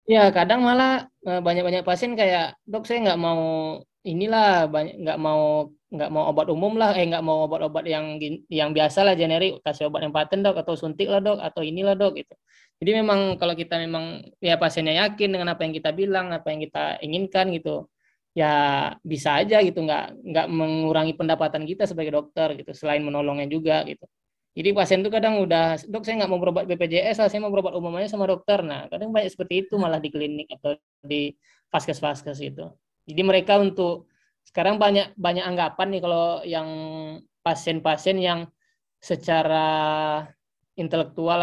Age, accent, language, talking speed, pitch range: 20-39, native, Indonesian, 170 wpm, 155-190 Hz